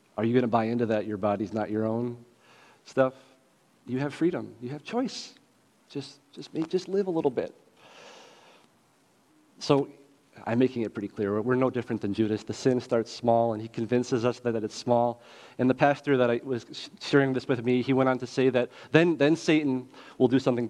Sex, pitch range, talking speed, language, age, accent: male, 110-130 Hz, 210 wpm, English, 40-59, American